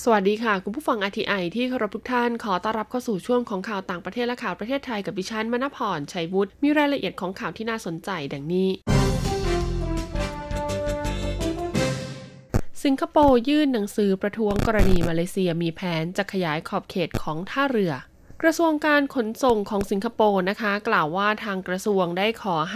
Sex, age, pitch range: female, 20-39, 185-230 Hz